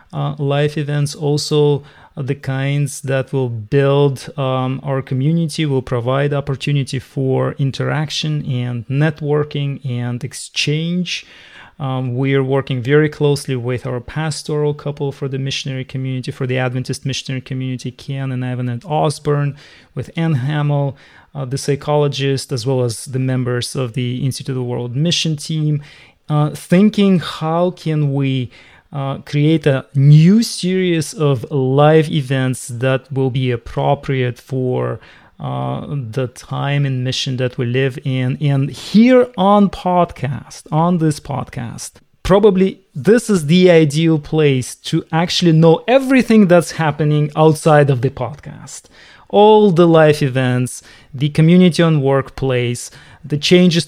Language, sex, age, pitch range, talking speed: English, male, 30-49, 130-155 Hz, 140 wpm